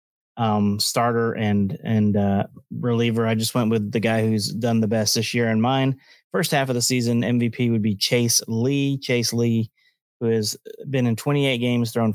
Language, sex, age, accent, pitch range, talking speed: English, male, 30-49, American, 110-125 Hz, 195 wpm